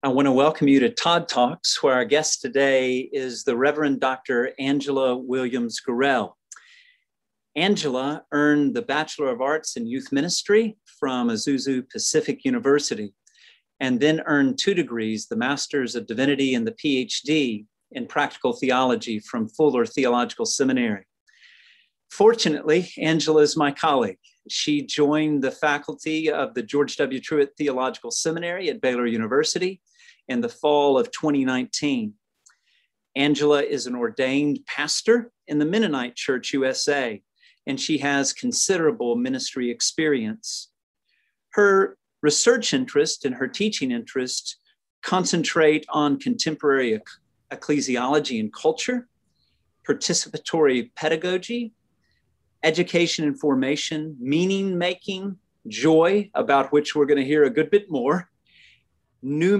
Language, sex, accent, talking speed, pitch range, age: English, male, American, 125 wpm, 135-205 Hz, 40-59